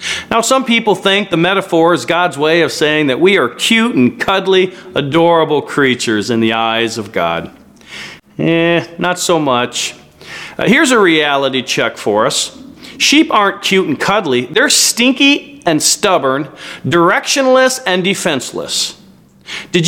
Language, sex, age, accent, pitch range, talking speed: English, male, 40-59, American, 150-210 Hz, 145 wpm